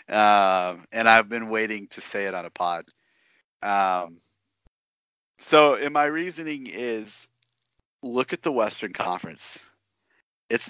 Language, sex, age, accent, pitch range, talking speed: English, male, 30-49, American, 100-130 Hz, 135 wpm